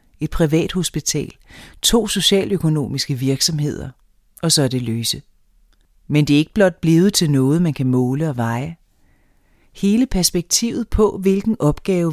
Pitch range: 130-175 Hz